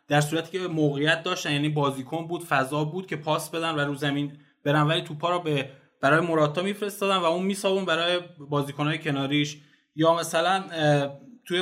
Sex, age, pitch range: male, 20-39, 145-180 Hz